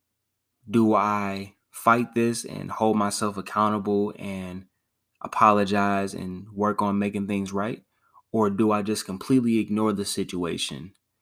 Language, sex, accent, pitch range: English, male, American, 95-110 Hz